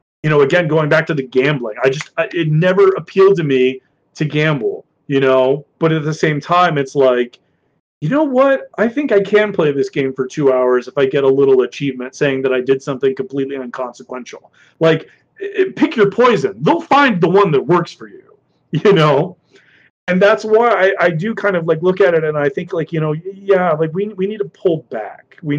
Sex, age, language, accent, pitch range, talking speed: male, 30-49, English, American, 135-180 Hz, 220 wpm